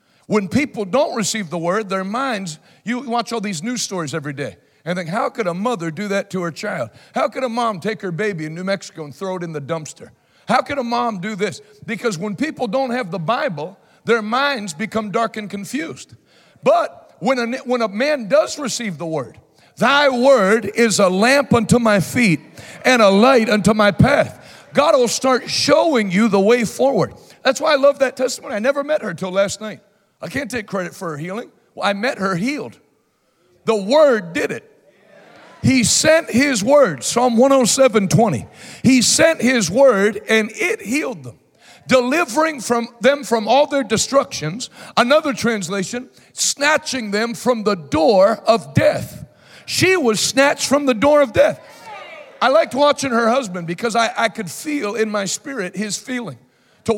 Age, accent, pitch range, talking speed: 60-79, American, 195-260 Hz, 185 wpm